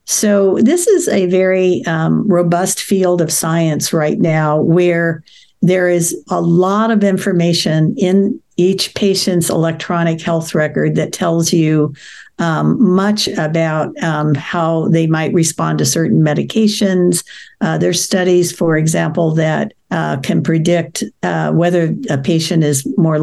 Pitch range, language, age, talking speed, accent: 160-190 Hz, English, 60-79, 140 wpm, American